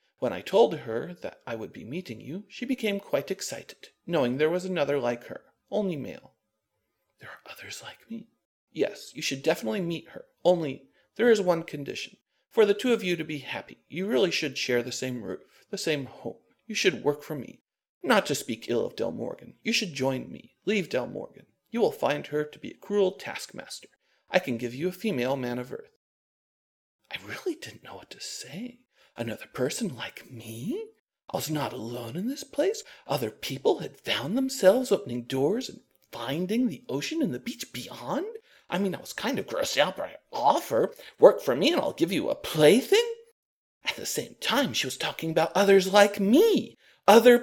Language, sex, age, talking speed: English, male, 40-59, 200 wpm